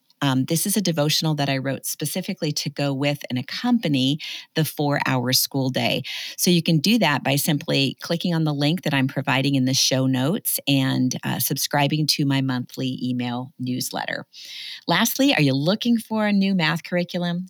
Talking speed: 180 wpm